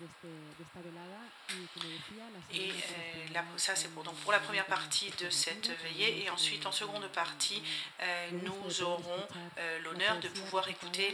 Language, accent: Spanish, French